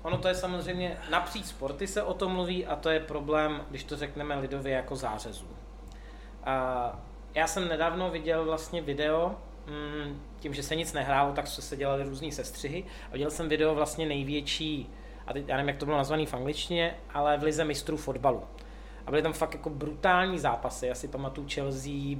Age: 20-39